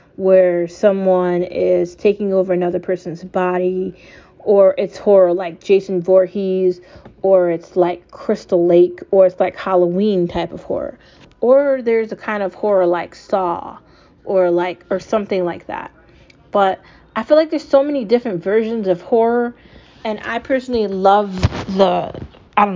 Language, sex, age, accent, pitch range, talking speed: English, female, 30-49, American, 185-220 Hz, 155 wpm